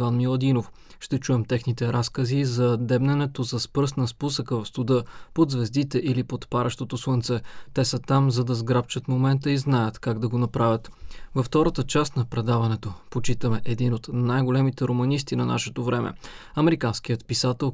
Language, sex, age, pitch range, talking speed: Bulgarian, male, 20-39, 120-135 Hz, 160 wpm